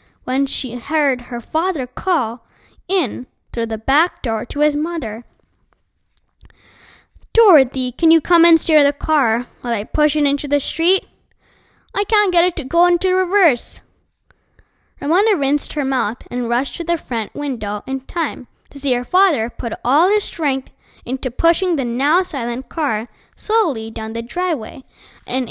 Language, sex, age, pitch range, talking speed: English, female, 10-29, 245-335 Hz, 160 wpm